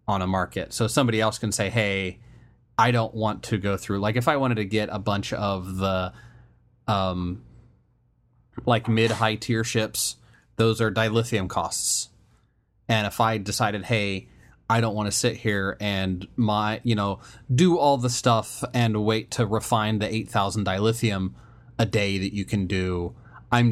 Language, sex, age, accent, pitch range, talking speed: English, male, 30-49, American, 100-120 Hz, 170 wpm